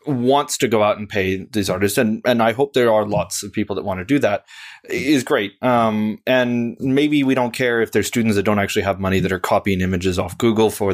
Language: English